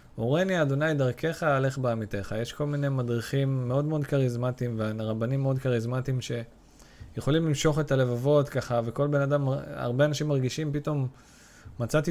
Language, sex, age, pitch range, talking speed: Hebrew, male, 20-39, 120-140 Hz, 140 wpm